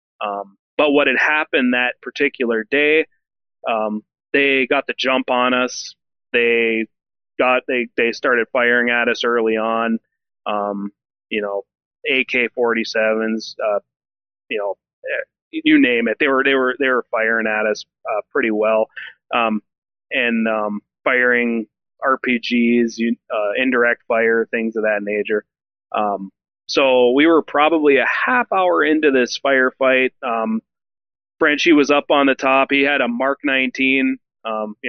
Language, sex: English, male